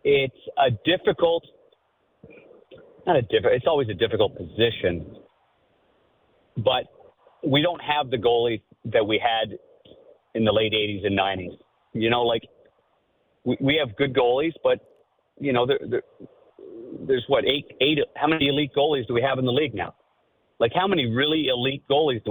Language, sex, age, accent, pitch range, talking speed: English, male, 50-69, American, 125-175 Hz, 160 wpm